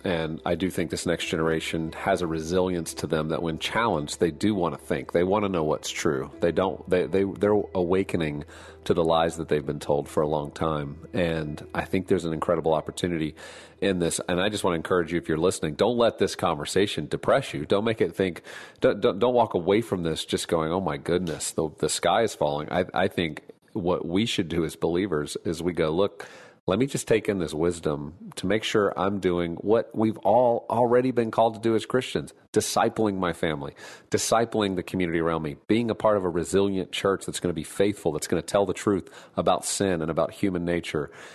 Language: English